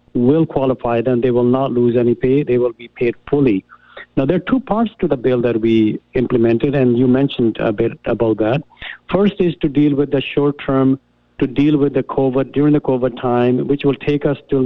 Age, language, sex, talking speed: 50-69, English, male, 220 wpm